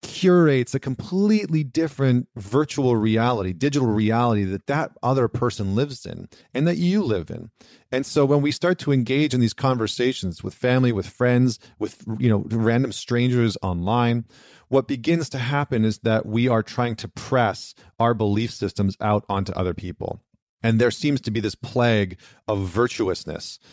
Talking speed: 165 wpm